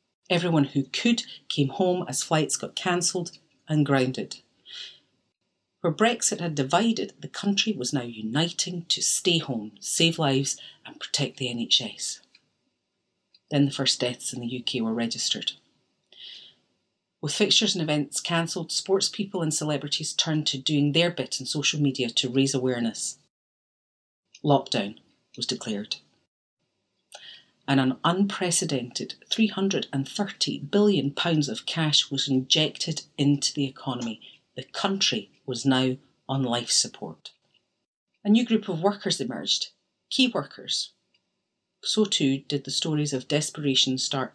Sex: female